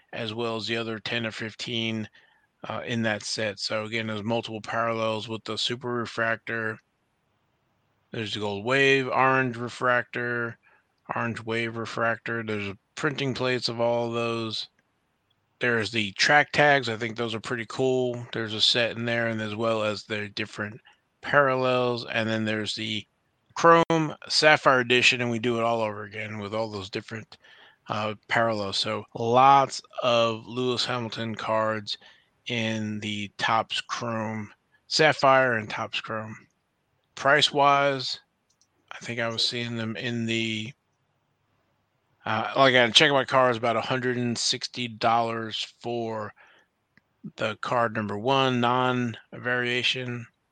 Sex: male